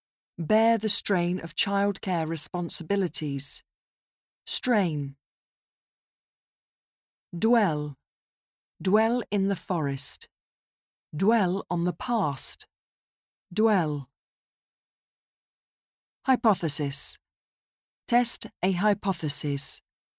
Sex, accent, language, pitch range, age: female, British, Japanese, 155-220 Hz, 40-59